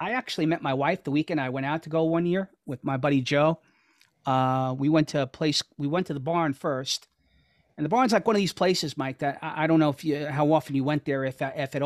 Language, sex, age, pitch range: English, male, 30-49, 135-160 Hz